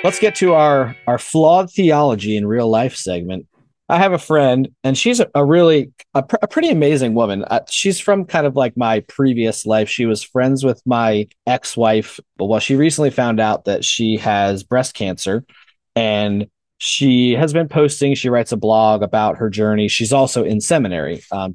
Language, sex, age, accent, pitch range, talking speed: English, male, 30-49, American, 110-145 Hz, 190 wpm